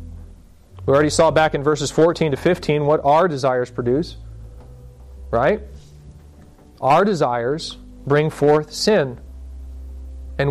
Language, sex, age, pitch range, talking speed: English, male, 40-59, 130-215 Hz, 115 wpm